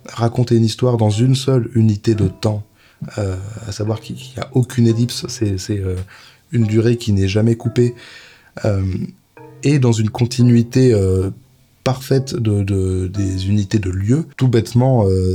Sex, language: male, French